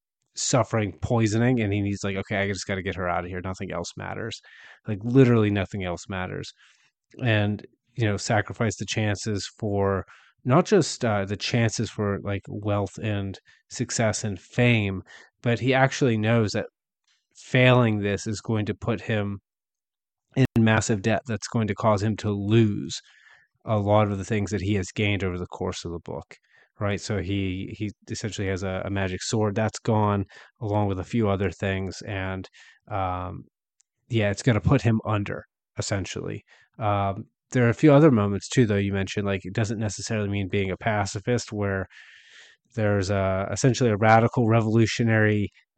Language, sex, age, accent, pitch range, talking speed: English, male, 30-49, American, 100-115 Hz, 175 wpm